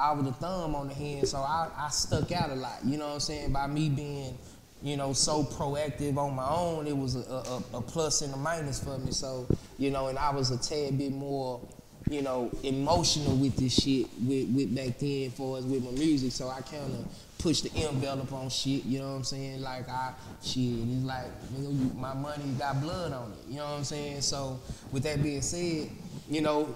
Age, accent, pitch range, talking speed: 20-39, American, 130-145 Hz, 225 wpm